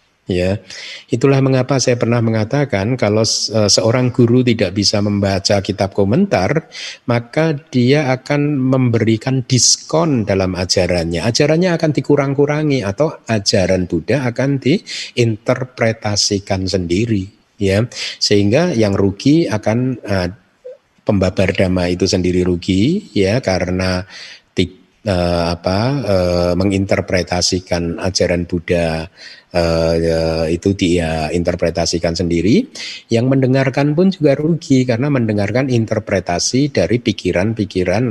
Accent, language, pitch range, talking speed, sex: native, Indonesian, 90-125 Hz, 100 wpm, male